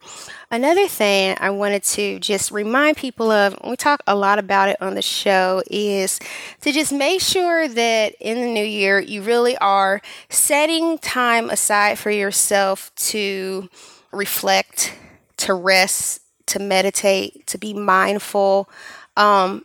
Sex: female